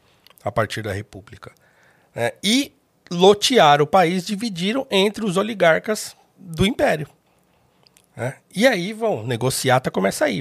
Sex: male